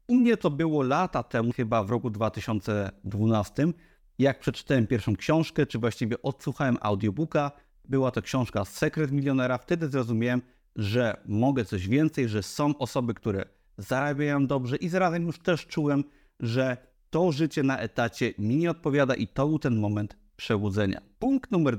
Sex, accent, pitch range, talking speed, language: male, native, 115-145 Hz, 155 wpm, Polish